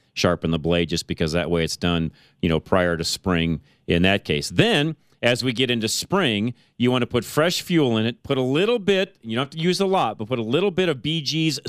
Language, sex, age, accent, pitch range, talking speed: English, male, 40-59, American, 110-145 Hz, 250 wpm